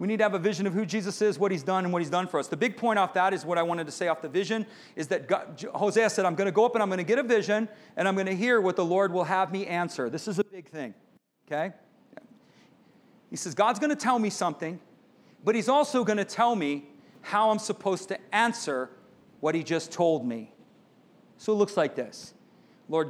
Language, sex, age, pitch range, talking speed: English, male, 40-59, 155-205 Hz, 245 wpm